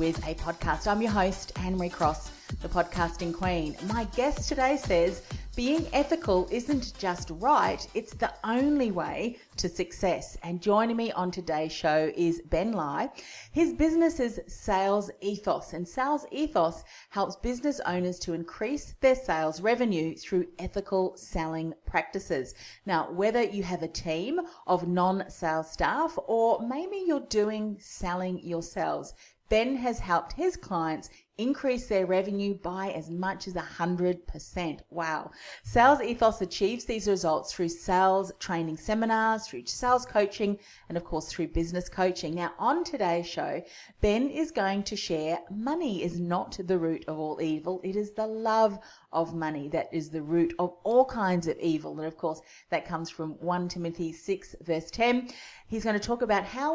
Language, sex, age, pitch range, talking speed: English, female, 40-59, 170-225 Hz, 165 wpm